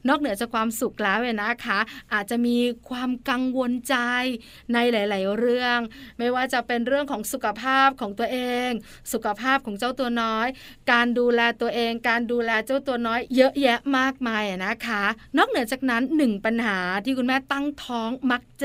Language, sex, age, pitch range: Thai, female, 20-39, 230-275 Hz